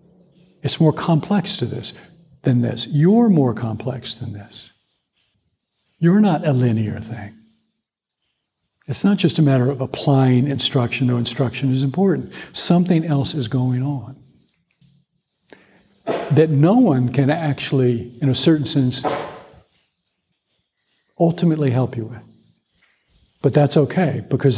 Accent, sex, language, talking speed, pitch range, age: American, male, English, 125 wpm, 125-150 Hz, 60-79